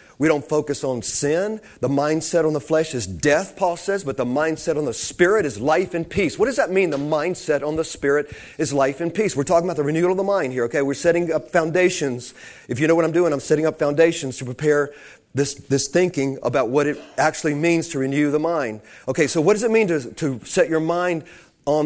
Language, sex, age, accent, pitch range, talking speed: English, male, 40-59, American, 145-175 Hz, 240 wpm